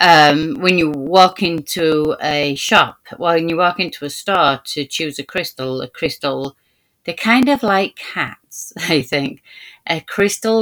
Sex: female